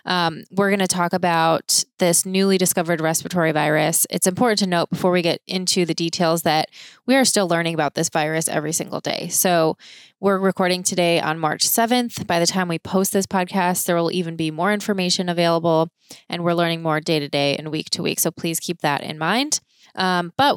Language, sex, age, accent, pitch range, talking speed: English, female, 20-39, American, 165-195 Hz, 210 wpm